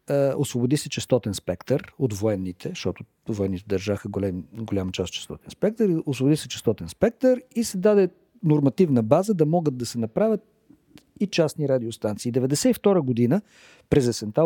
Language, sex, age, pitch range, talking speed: Bulgarian, male, 50-69, 120-185 Hz, 145 wpm